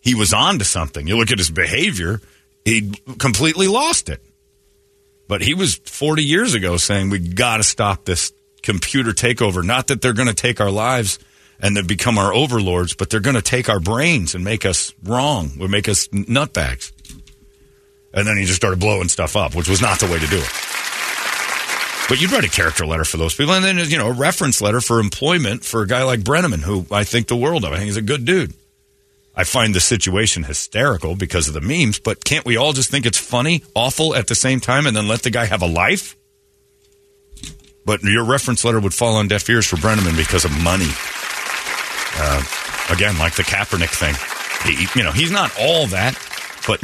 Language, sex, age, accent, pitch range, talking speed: English, male, 40-59, American, 90-130 Hz, 210 wpm